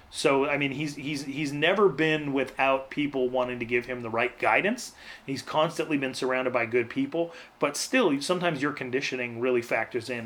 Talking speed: 185 wpm